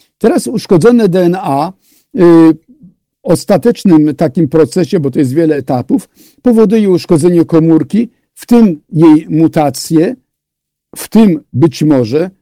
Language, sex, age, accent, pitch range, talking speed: Polish, male, 50-69, native, 150-210 Hz, 110 wpm